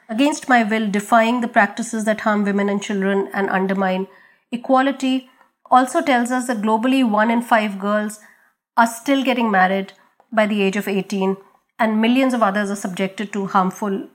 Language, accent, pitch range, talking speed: English, Indian, 200-245 Hz, 170 wpm